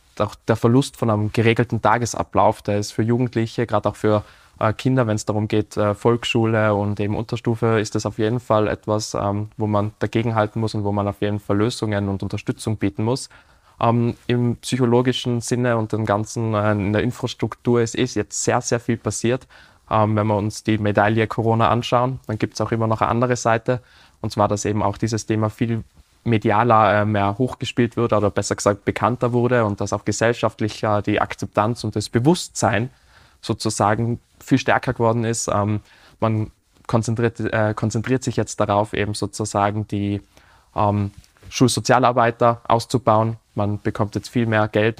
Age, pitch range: 20-39, 105-120 Hz